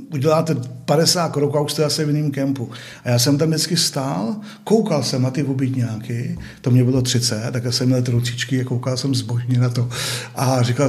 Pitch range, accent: 125-145 Hz, native